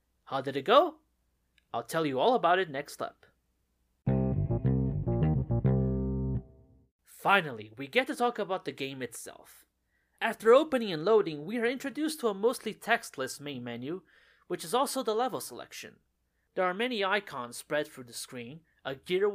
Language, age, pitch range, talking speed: English, 30-49, 130-205 Hz, 155 wpm